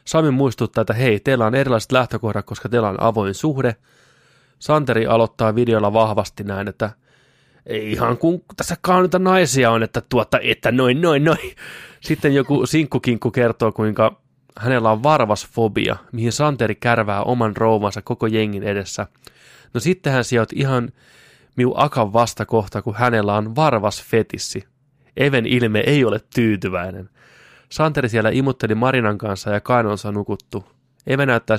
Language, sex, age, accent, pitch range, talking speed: Finnish, male, 20-39, native, 105-130 Hz, 140 wpm